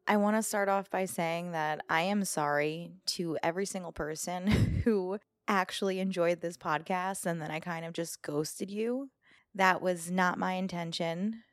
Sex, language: female, English